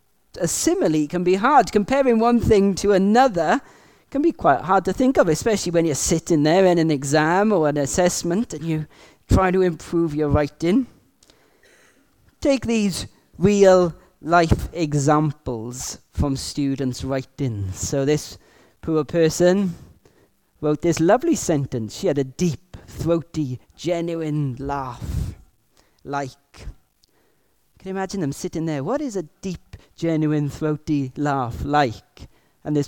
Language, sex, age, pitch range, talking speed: English, male, 30-49, 140-185 Hz, 135 wpm